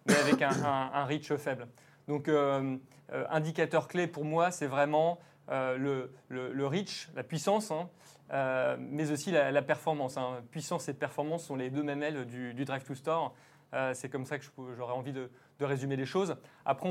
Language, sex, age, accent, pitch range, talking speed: French, male, 20-39, French, 135-160 Hz, 200 wpm